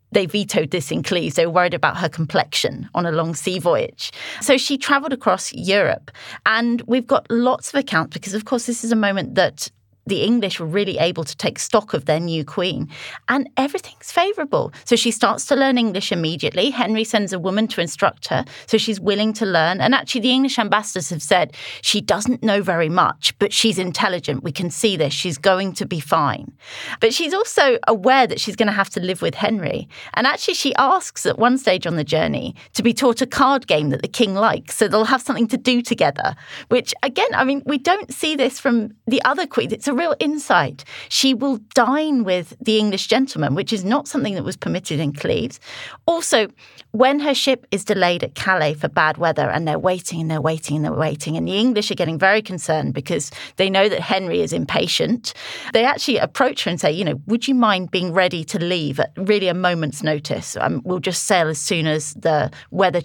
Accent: British